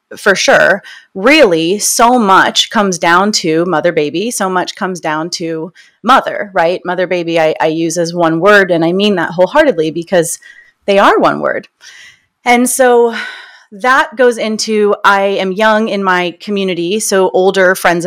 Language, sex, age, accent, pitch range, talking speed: English, female, 30-49, American, 170-220 Hz, 165 wpm